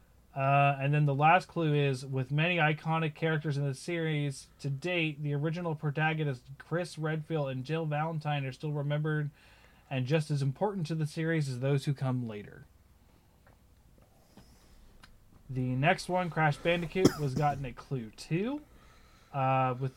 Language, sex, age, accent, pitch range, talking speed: English, male, 20-39, American, 130-160 Hz, 155 wpm